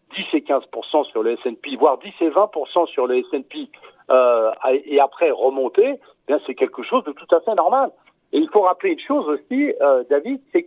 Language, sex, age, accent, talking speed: French, male, 60-79, French, 200 wpm